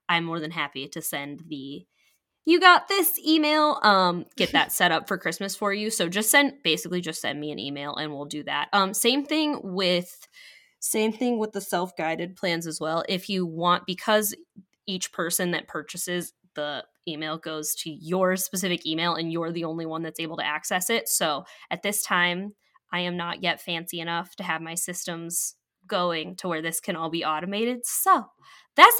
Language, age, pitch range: English, 10-29, 165-215 Hz